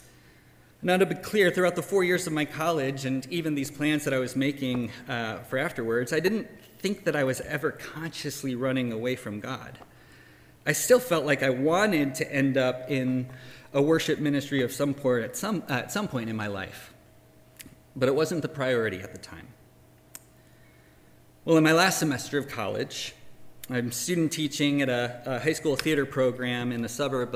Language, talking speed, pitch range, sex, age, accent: English, 190 wpm, 115-150 Hz, male, 30-49, American